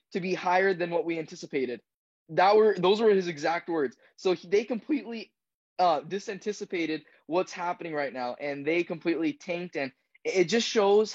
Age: 10-29